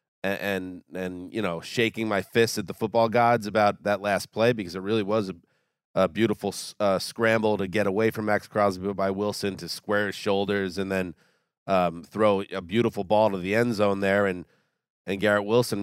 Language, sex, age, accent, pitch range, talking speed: English, male, 30-49, American, 105-125 Hz, 200 wpm